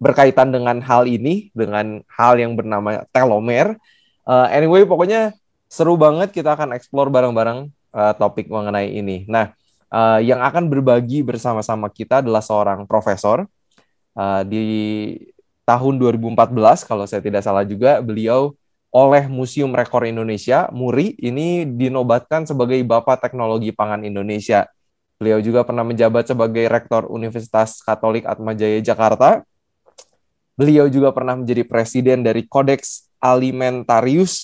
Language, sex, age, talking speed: Indonesian, male, 20-39, 125 wpm